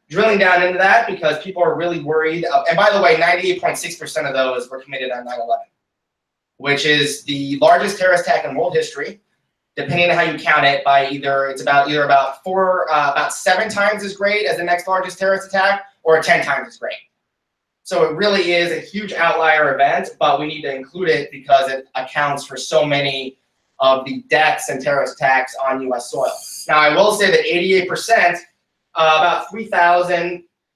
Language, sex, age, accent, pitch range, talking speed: English, male, 20-39, American, 140-185 Hz, 190 wpm